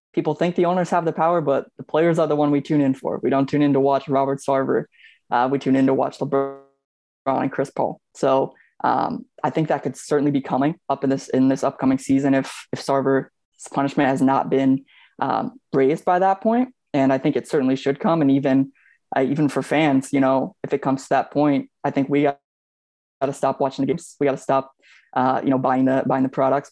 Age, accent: 20-39, American